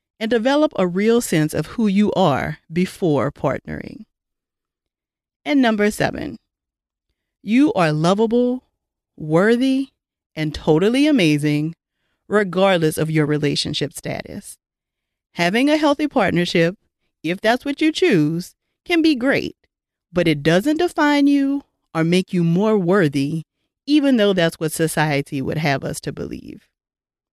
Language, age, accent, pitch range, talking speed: English, 40-59, American, 160-255 Hz, 125 wpm